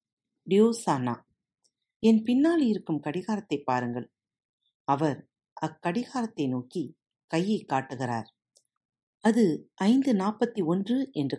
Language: Tamil